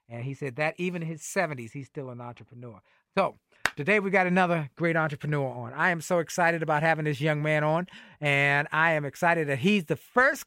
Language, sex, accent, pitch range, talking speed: English, male, American, 150-205 Hz, 220 wpm